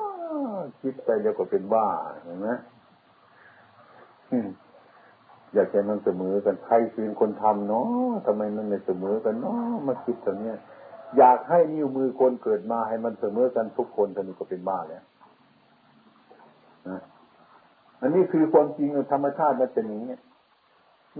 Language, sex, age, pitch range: Thai, male, 60-79, 105-150 Hz